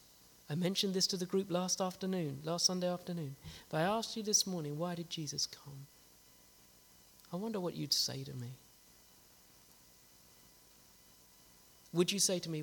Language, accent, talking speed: English, British, 155 wpm